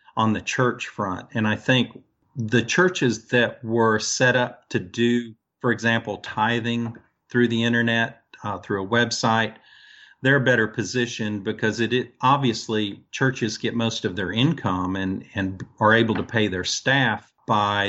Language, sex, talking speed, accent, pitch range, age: English, male, 160 wpm, American, 100-120 Hz, 50-69